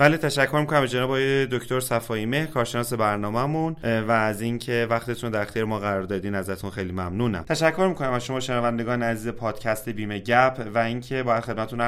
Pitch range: 110-130 Hz